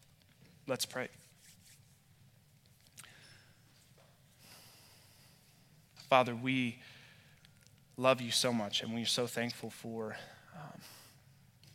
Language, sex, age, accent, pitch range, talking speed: English, male, 20-39, American, 120-135 Hz, 75 wpm